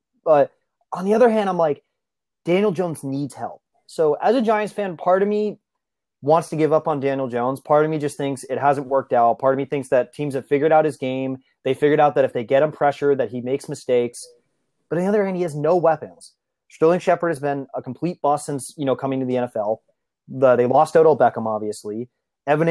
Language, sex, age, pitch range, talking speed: English, male, 30-49, 135-170 Hz, 235 wpm